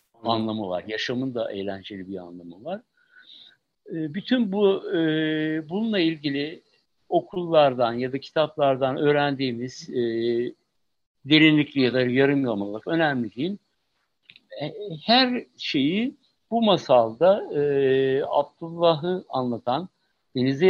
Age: 60-79